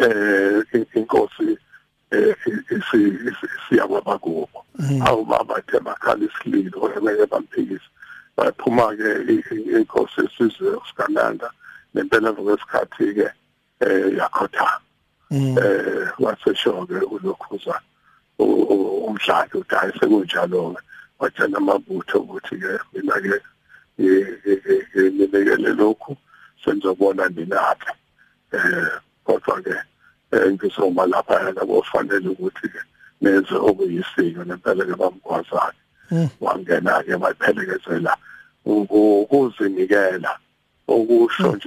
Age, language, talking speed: 60-79, English, 90 wpm